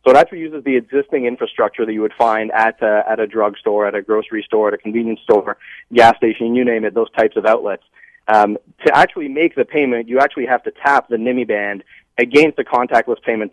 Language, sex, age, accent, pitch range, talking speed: English, male, 30-49, American, 115-150 Hz, 225 wpm